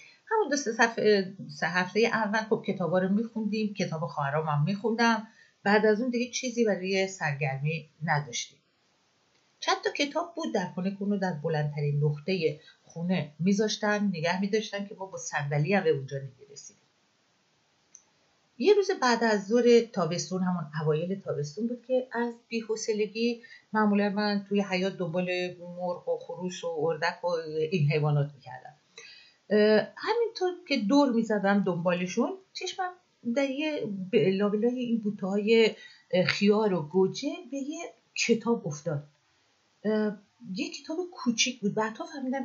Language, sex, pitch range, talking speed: Persian, female, 170-235 Hz, 135 wpm